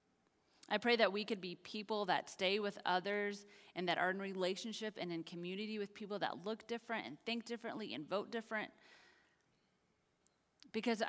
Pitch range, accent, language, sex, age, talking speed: 160-205 Hz, American, English, female, 30-49, 170 wpm